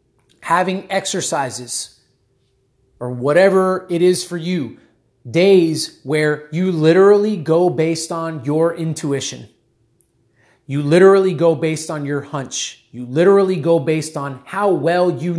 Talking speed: 125 wpm